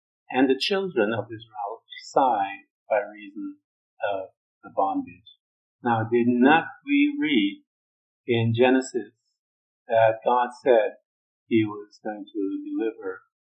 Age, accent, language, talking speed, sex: 50-69, American, English, 115 wpm, male